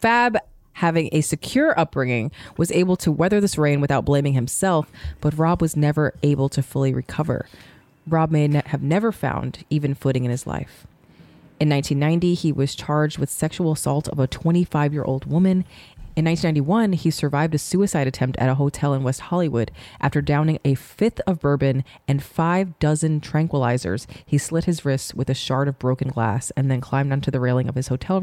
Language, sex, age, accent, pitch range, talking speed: English, female, 20-39, American, 130-165 Hz, 185 wpm